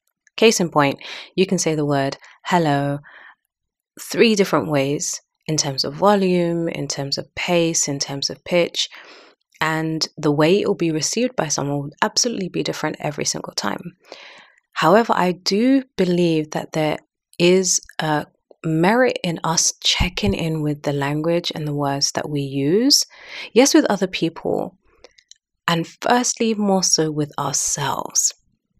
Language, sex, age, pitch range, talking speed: English, female, 30-49, 140-175 Hz, 150 wpm